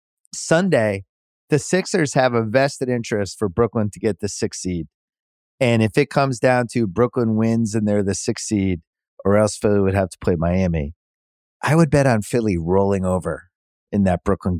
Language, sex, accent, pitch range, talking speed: English, male, American, 100-140 Hz, 185 wpm